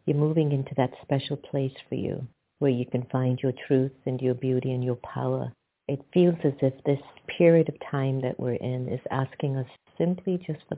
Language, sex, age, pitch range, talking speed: English, female, 50-69, 130-170 Hz, 200 wpm